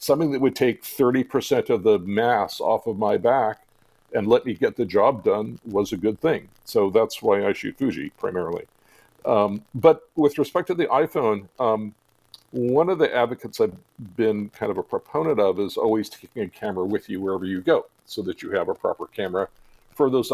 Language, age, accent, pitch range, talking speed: English, 50-69, American, 105-150 Hz, 200 wpm